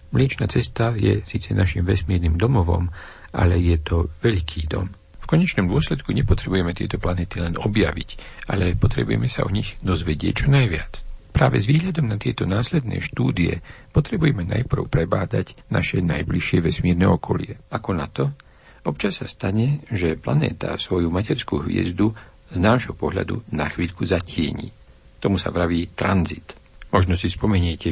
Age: 60-79